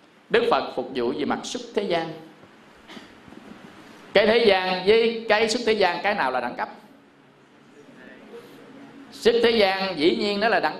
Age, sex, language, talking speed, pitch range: 20-39, male, Vietnamese, 165 wpm, 185-250 Hz